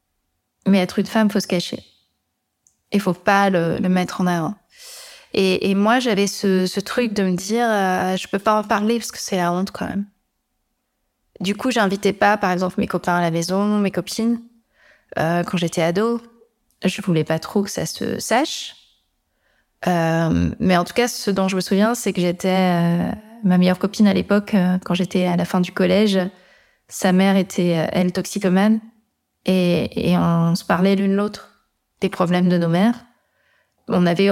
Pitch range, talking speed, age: 180-215 Hz, 200 wpm, 20-39